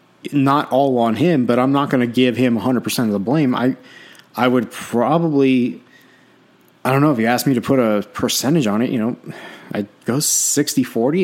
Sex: male